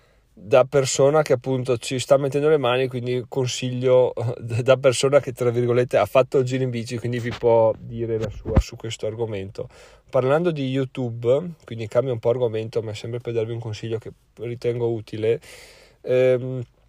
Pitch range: 120-145 Hz